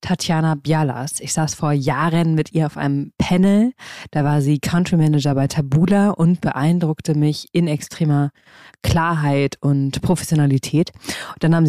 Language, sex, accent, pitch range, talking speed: German, female, German, 150-175 Hz, 150 wpm